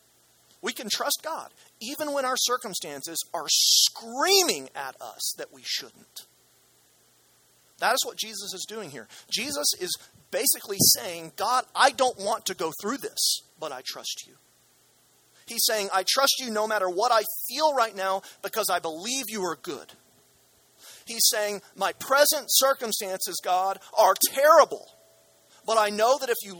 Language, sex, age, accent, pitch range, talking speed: English, male, 40-59, American, 160-230 Hz, 160 wpm